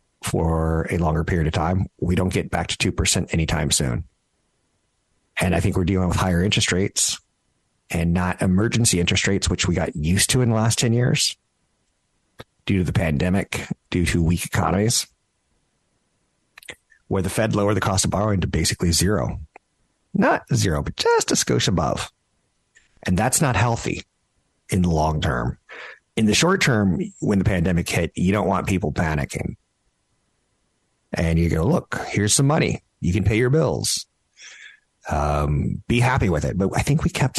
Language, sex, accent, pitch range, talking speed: English, male, American, 85-105 Hz, 170 wpm